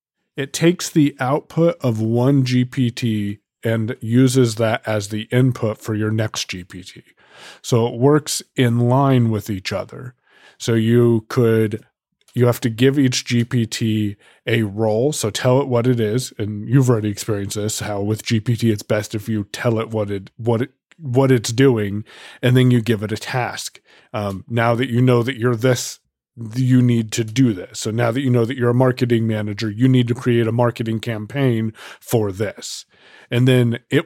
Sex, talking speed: male, 185 wpm